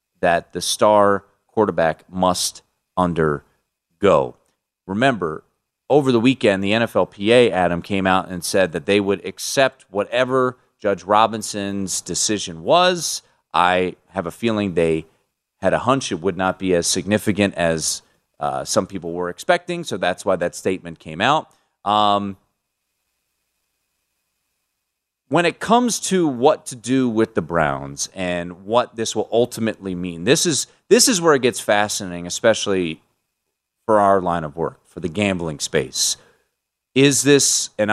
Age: 30-49